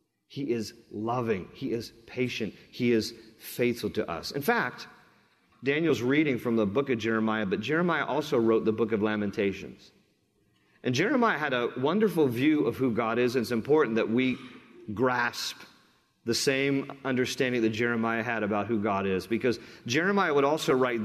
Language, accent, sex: English, American, male